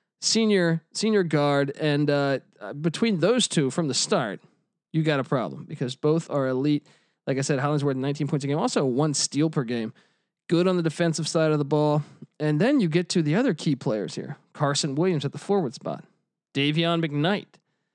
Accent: American